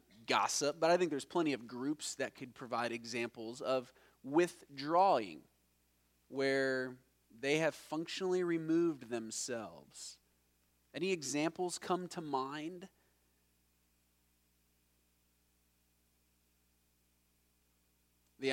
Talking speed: 85 wpm